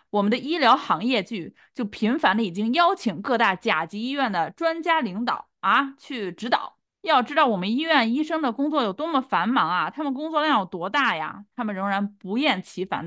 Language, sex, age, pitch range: Chinese, female, 20-39, 195-270 Hz